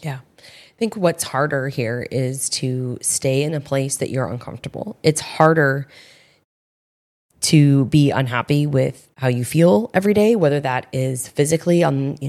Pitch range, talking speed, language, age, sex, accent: 135-160 Hz, 155 wpm, English, 20-39, female, American